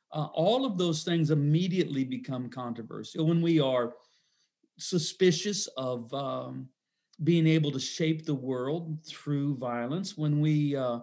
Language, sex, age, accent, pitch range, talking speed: English, male, 40-59, American, 135-160 Hz, 135 wpm